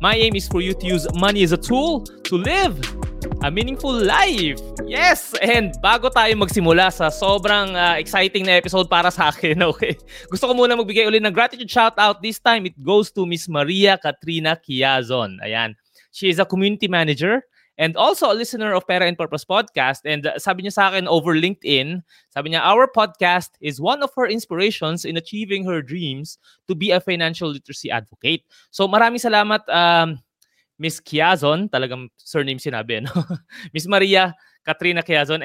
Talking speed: 175 wpm